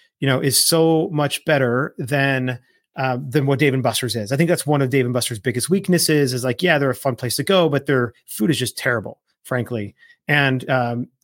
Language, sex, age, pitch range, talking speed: English, male, 30-49, 125-150 Hz, 225 wpm